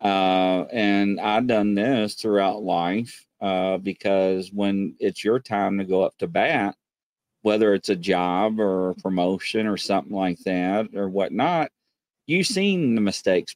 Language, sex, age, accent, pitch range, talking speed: English, male, 40-59, American, 95-125 Hz, 155 wpm